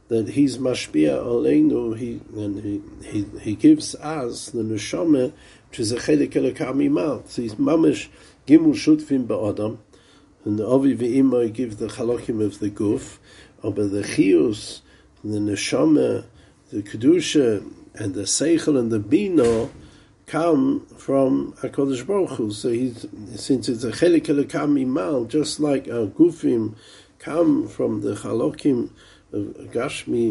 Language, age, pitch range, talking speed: English, 50-69, 110-155 Hz, 140 wpm